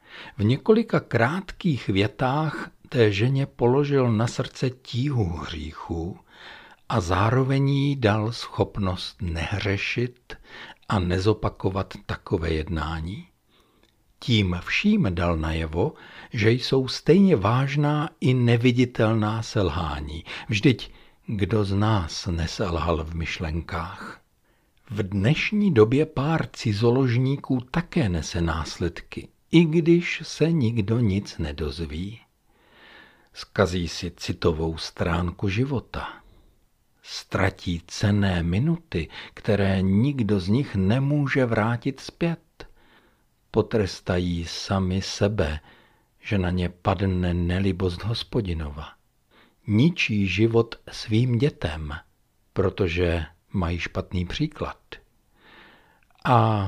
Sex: male